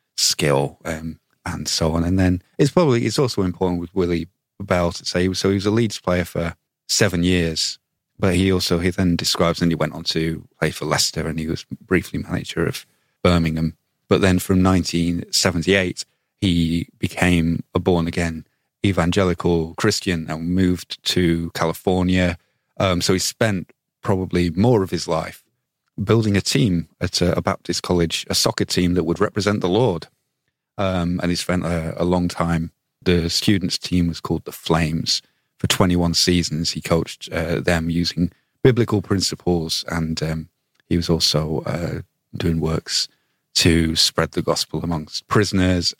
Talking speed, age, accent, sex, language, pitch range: 165 wpm, 30-49, British, male, English, 80-95 Hz